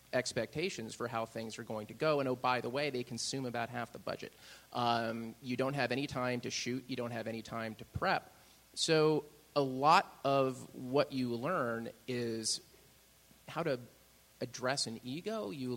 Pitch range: 120-140 Hz